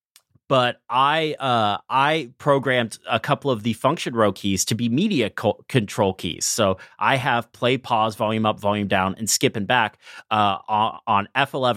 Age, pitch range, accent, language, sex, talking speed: 30-49, 105-135 Hz, American, English, male, 175 wpm